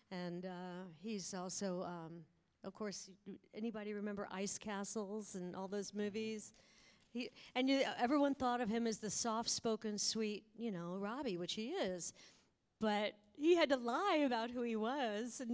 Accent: American